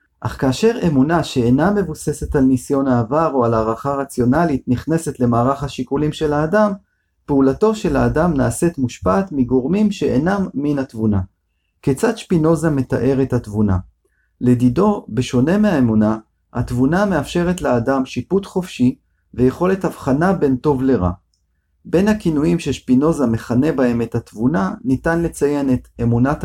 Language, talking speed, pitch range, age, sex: Hebrew, 125 wpm, 115-160 Hz, 40-59, male